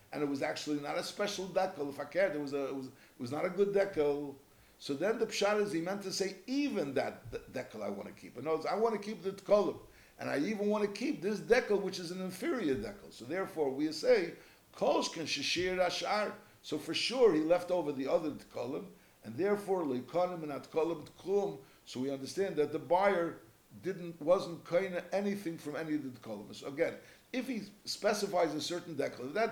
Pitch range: 145-200 Hz